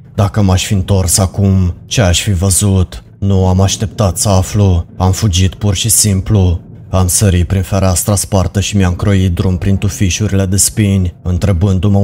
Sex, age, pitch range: male, 30-49, 90-100 Hz